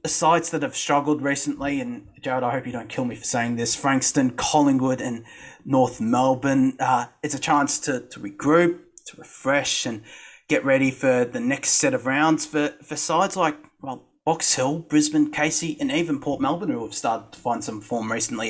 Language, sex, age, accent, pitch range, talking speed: English, male, 30-49, Australian, 135-170 Hz, 195 wpm